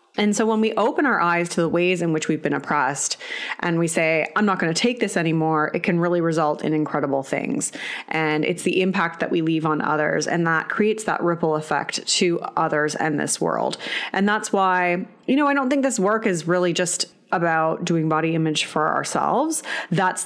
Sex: female